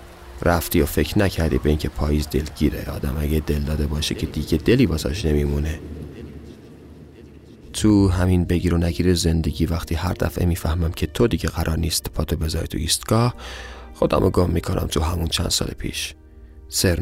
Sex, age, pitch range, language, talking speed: male, 30-49, 80-90 Hz, Persian, 160 wpm